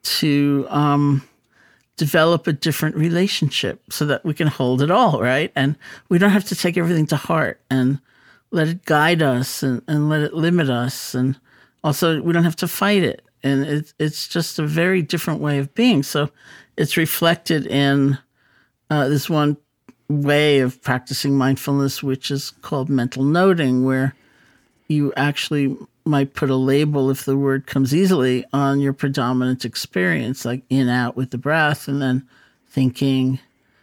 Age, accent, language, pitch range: 50-69, American, English, 130-155 Hz